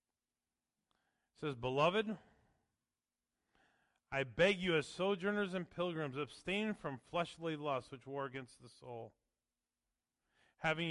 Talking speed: 110 wpm